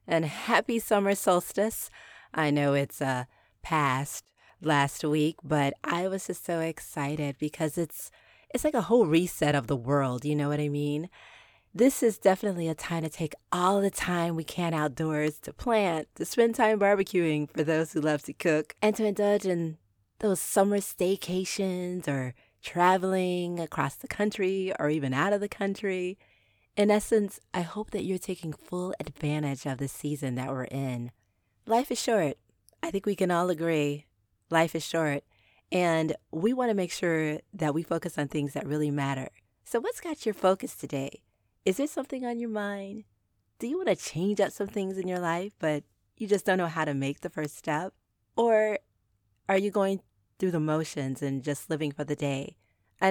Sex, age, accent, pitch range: female, 30-49, American, 145-195 Hz